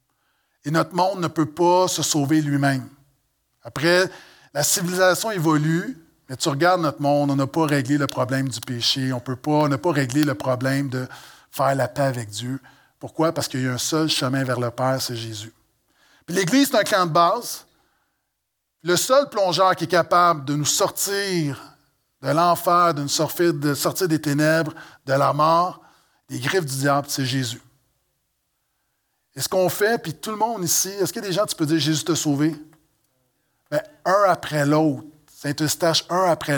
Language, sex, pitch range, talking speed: French, male, 135-170 Hz, 185 wpm